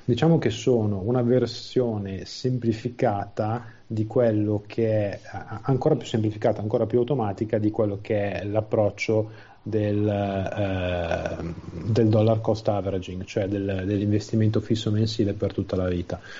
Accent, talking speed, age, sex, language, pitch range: native, 125 wpm, 30-49, male, Italian, 100-110 Hz